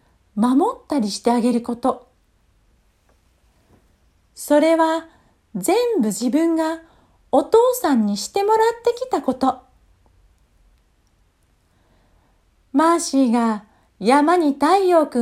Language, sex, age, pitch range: Japanese, female, 40-59, 215-330 Hz